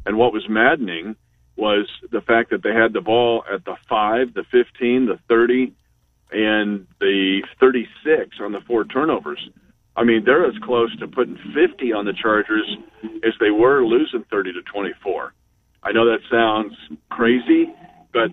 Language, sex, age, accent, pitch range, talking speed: English, male, 50-69, American, 110-160 Hz, 165 wpm